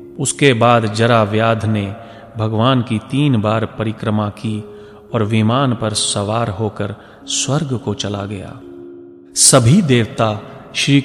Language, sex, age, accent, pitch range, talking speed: Hindi, male, 30-49, native, 110-135 Hz, 125 wpm